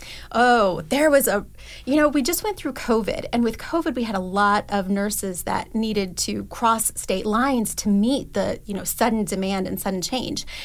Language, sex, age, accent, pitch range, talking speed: English, female, 30-49, American, 200-245 Hz, 205 wpm